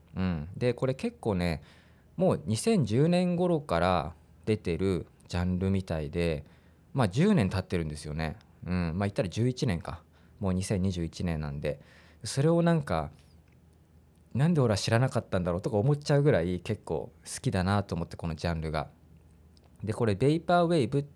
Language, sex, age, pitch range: Japanese, male, 20-39, 85-140 Hz